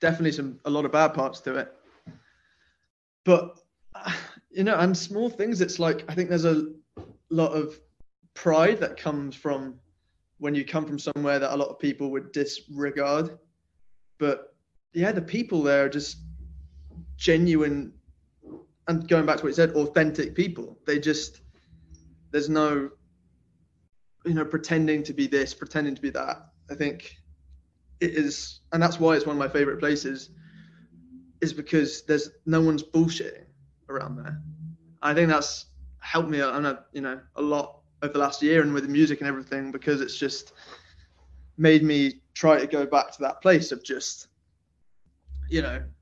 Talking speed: 170 wpm